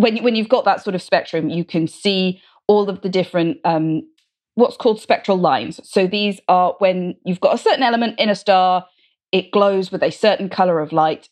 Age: 20-39